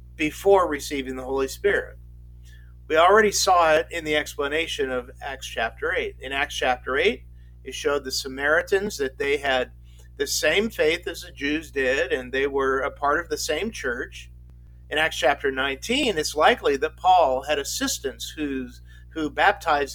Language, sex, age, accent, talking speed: English, male, 50-69, American, 165 wpm